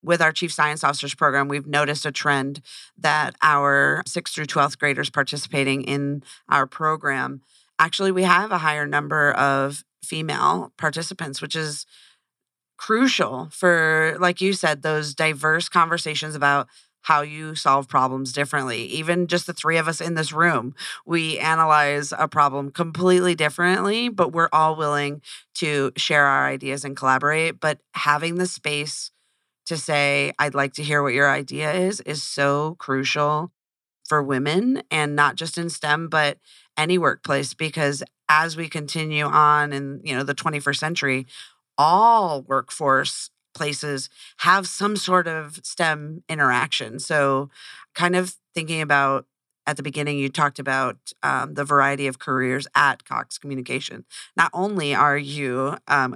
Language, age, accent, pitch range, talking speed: English, 40-59, American, 140-165 Hz, 150 wpm